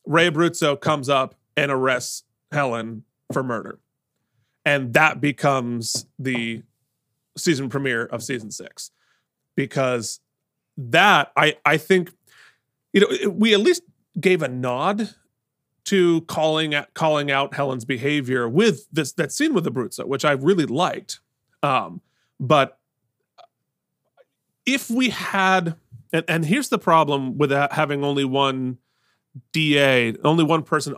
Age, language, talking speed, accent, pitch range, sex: 30-49, English, 130 wpm, American, 130-165 Hz, male